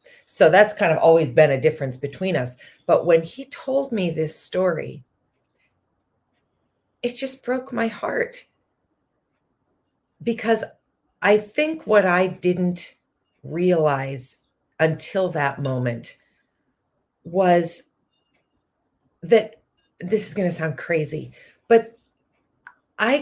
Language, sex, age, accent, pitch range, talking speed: English, female, 40-59, American, 155-205 Hz, 105 wpm